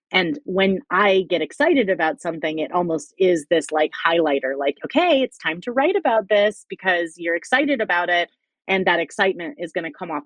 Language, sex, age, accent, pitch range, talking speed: English, female, 30-49, American, 160-210 Hz, 200 wpm